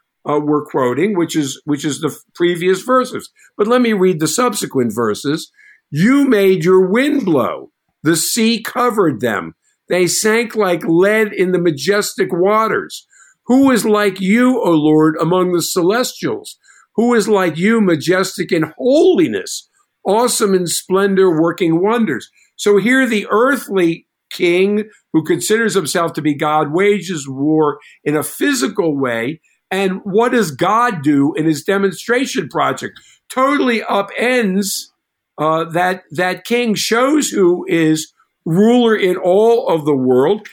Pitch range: 165-220 Hz